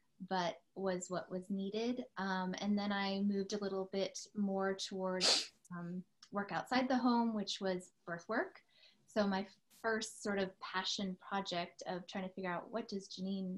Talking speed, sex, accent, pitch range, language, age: 170 wpm, female, American, 180-205 Hz, English, 20-39